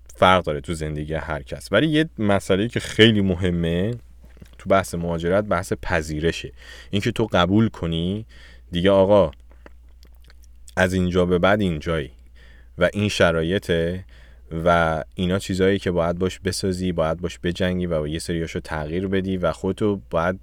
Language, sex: Persian, male